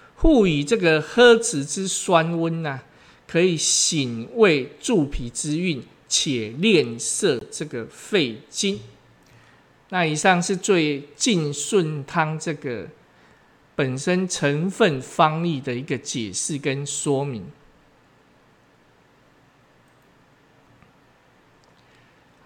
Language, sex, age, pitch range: Chinese, male, 50-69, 140-205 Hz